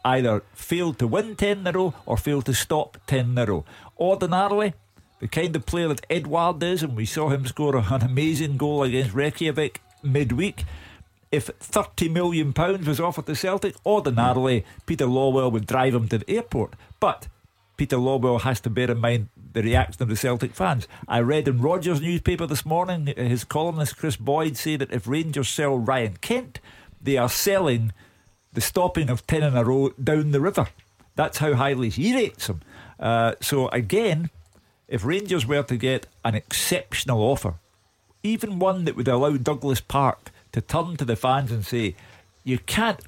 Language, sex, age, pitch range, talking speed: English, male, 50-69, 115-155 Hz, 175 wpm